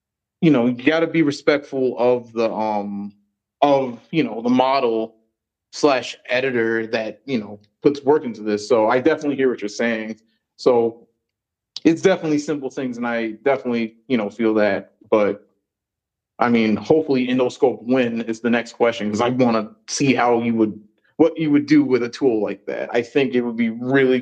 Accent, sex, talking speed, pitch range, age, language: American, male, 185 wpm, 110-130 Hz, 30-49, English